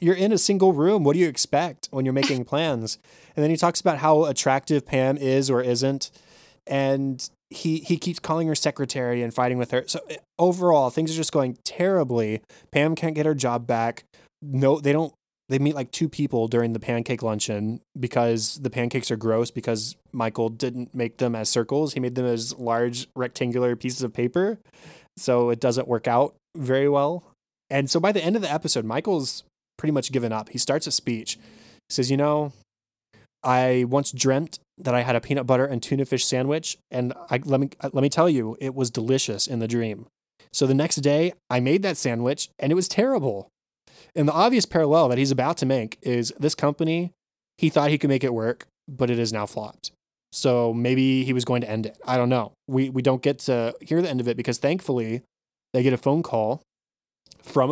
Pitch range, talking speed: 120-150 Hz, 205 wpm